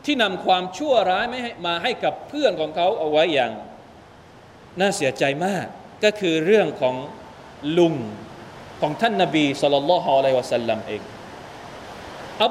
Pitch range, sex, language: 175-270 Hz, male, Thai